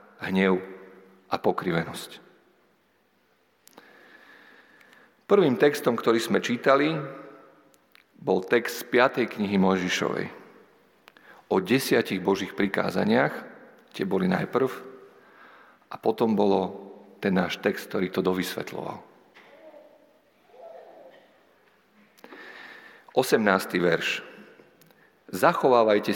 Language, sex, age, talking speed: Slovak, male, 50-69, 75 wpm